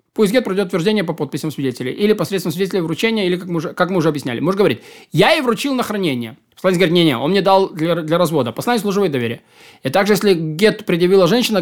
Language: Russian